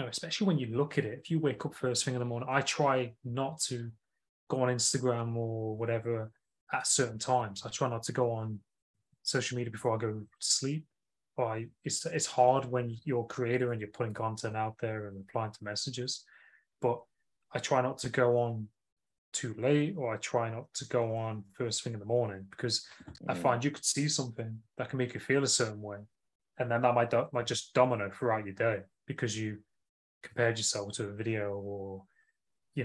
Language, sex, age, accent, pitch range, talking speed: English, male, 20-39, British, 110-130 Hz, 205 wpm